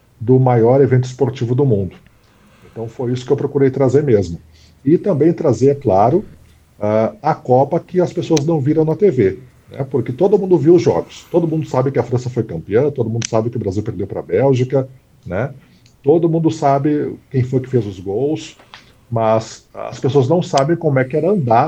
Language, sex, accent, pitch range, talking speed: Portuguese, male, Brazilian, 120-145 Hz, 205 wpm